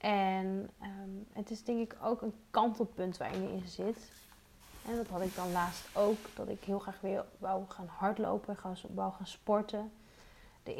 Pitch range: 185-215 Hz